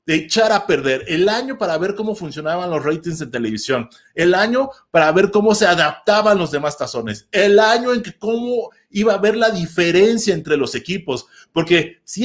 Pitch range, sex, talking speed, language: 170-225 Hz, male, 190 wpm, Spanish